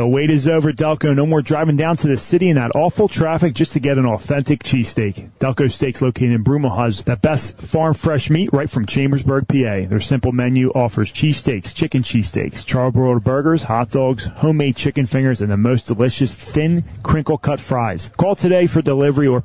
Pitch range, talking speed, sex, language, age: 120-165 Hz, 190 wpm, male, English, 30-49